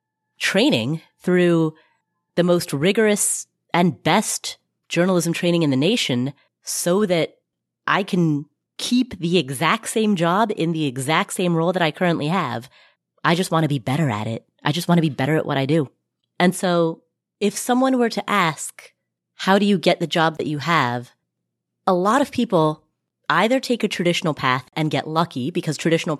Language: English